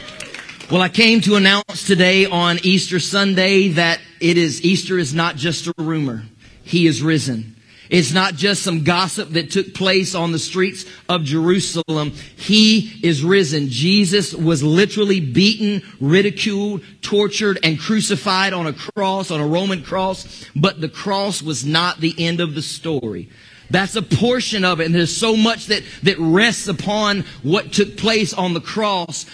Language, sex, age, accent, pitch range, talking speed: English, male, 40-59, American, 165-200 Hz, 165 wpm